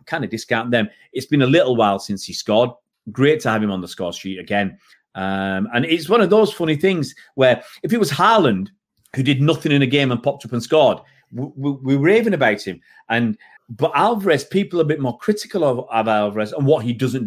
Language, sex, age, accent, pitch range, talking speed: English, male, 40-59, British, 120-165 Hz, 235 wpm